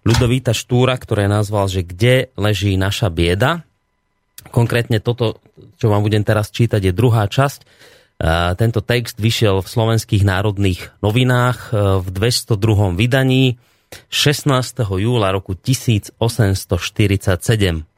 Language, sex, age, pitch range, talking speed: Slovak, male, 30-49, 100-130 Hz, 110 wpm